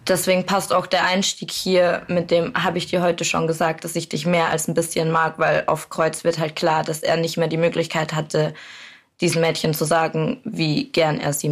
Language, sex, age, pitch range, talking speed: German, female, 20-39, 160-180 Hz, 225 wpm